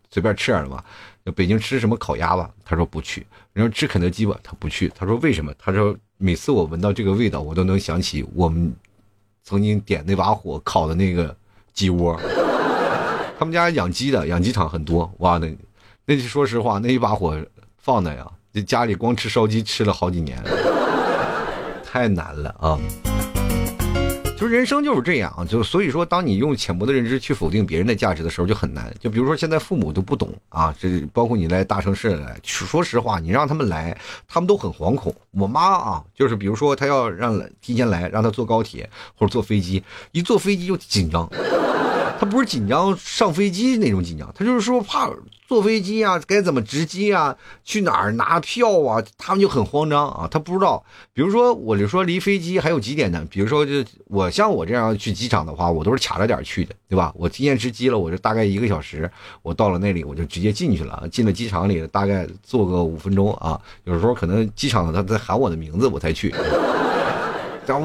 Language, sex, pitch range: Chinese, male, 90-130 Hz